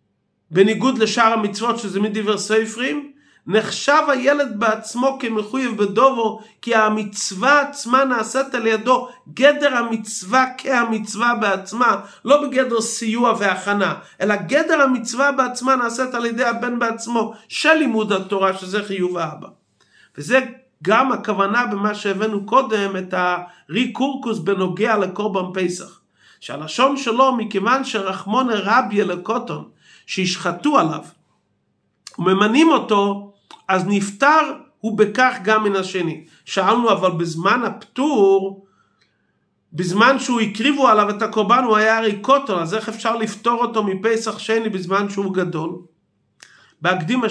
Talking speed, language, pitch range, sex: 120 wpm, Hebrew, 195-245 Hz, male